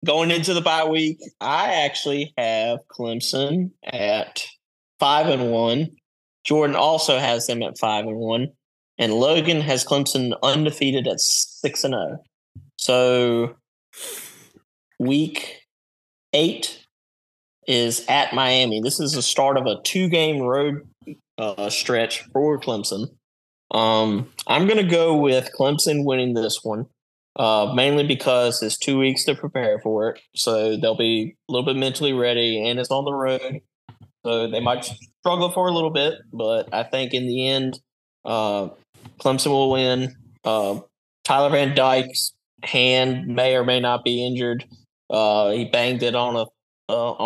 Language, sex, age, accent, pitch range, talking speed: English, male, 20-39, American, 115-135 Hz, 150 wpm